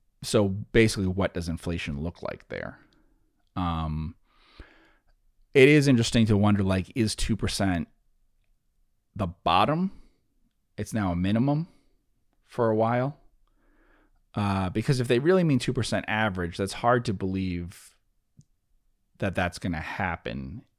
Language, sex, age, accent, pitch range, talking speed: English, male, 30-49, American, 85-110 Hz, 125 wpm